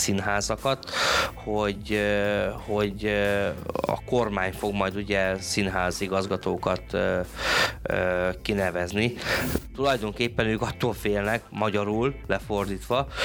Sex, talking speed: male, 75 wpm